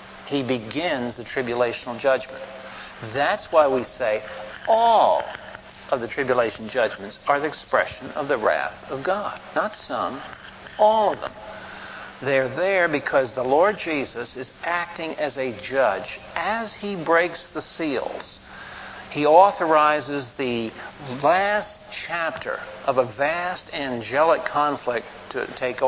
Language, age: English, 60-79